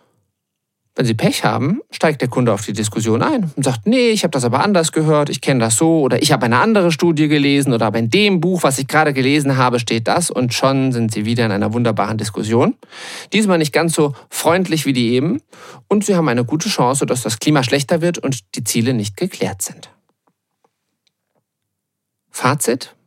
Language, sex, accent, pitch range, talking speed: German, male, German, 110-140 Hz, 205 wpm